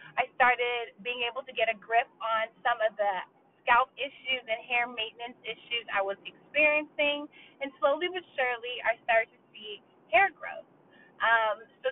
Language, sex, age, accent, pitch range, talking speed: English, female, 20-39, American, 235-310 Hz, 165 wpm